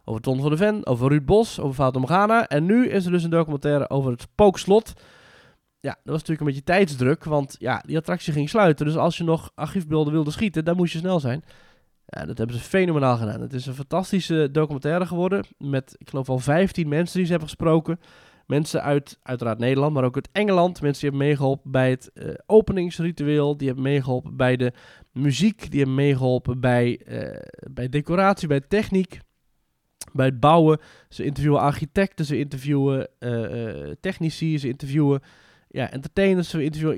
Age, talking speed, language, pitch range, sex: 20-39, 185 wpm, Dutch, 125-170 Hz, male